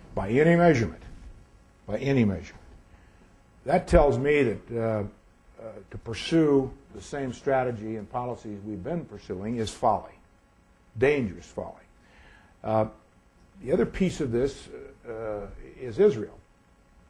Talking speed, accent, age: 125 wpm, American, 60-79